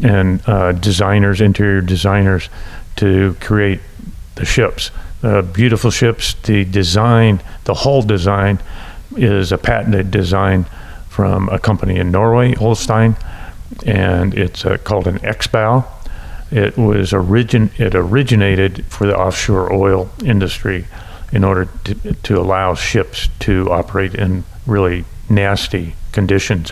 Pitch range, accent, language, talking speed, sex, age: 90-105 Hz, American, English, 125 wpm, male, 50-69